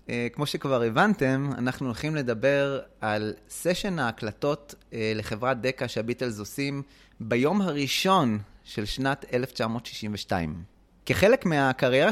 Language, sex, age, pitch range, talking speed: Hebrew, male, 30-49, 120-165 Hz, 100 wpm